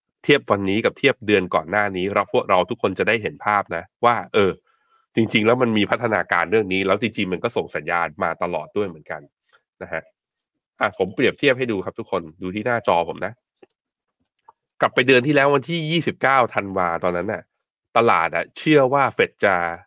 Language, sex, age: Thai, male, 20-39